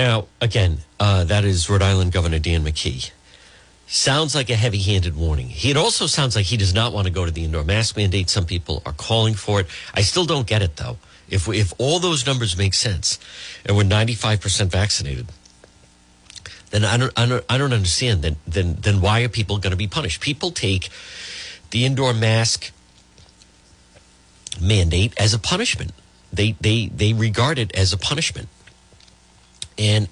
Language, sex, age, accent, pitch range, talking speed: English, male, 50-69, American, 90-120 Hz, 180 wpm